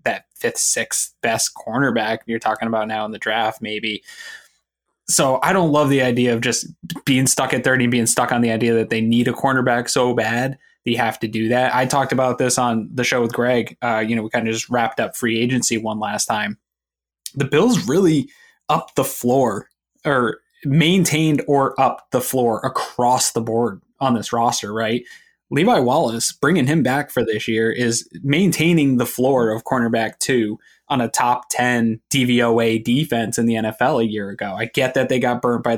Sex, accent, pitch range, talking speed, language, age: male, American, 115-130 Hz, 200 wpm, English, 20-39